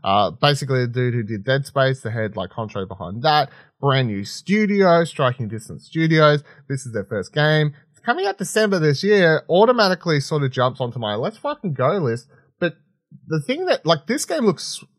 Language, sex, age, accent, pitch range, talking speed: English, male, 30-49, Australian, 110-160 Hz, 195 wpm